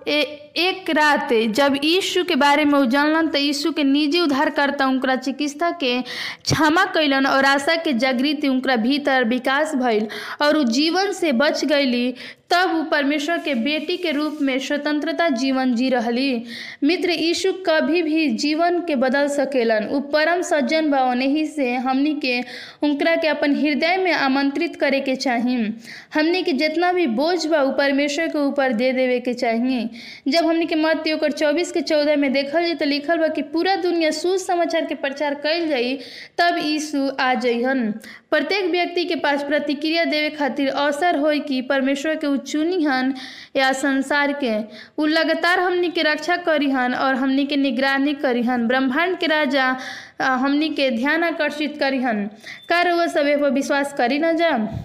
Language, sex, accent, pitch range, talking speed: Hindi, female, native, 265-320 Hz, 160 wpm